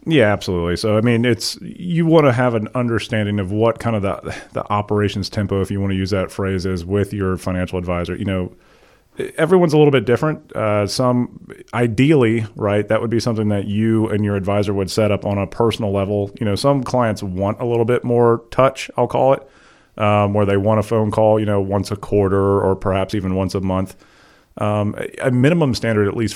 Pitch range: 95-115 Hz